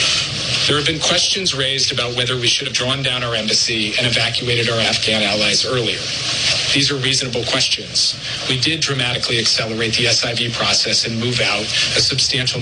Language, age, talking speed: English, 40-59, 170 wpm